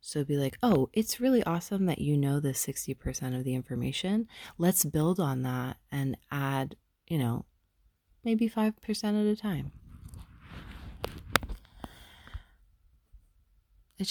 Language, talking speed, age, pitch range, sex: English, 125 wpm, 20-39, 130-165 Hz, female